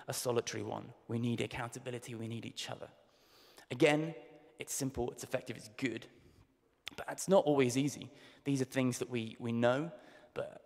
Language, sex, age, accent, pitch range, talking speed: English, male, 20-39, British, 120-150 Hz, 170 wpm